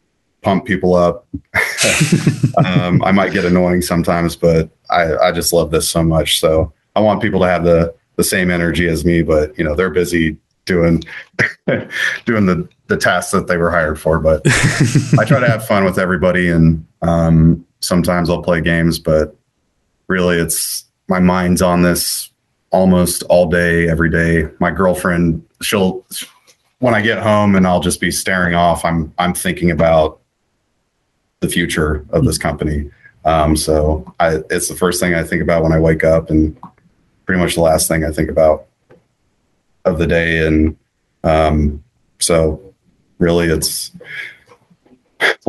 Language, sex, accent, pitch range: English, male, American, 80-90 Hz